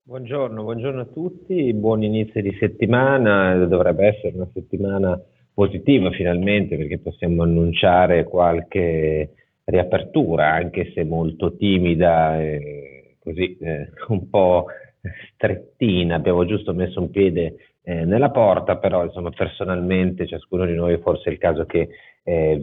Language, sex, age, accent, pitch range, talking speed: Italian, male, 30-49, native, 80-100 Hz, 130 wpm